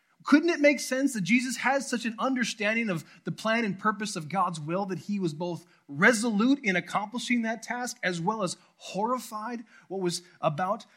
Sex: male